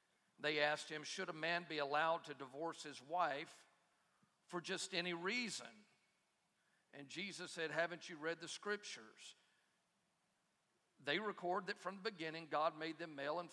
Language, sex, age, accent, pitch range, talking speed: English, male, 50-69, American, 150-175 Hz, 155 wpm